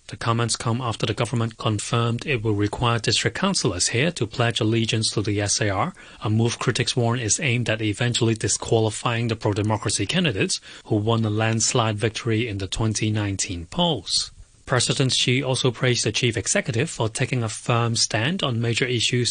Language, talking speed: English, 170 wpm